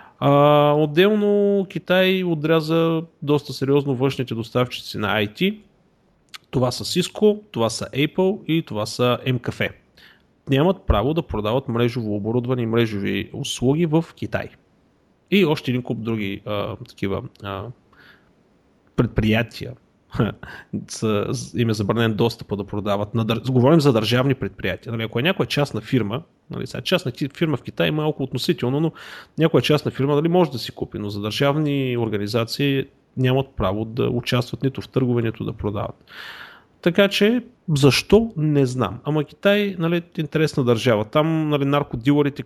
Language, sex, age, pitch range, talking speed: Bulgarian, male, 30-49, 115-155 Hz, 140 wpm